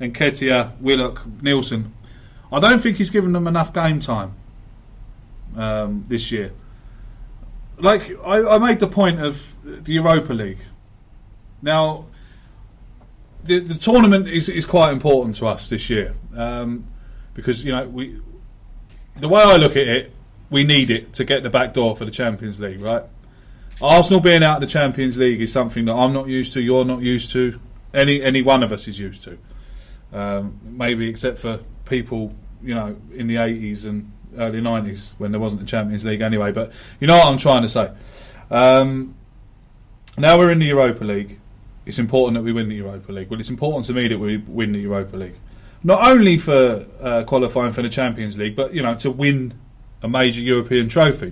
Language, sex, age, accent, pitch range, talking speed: English, male, 30-49, British, 110-135 Hz, 185 wpm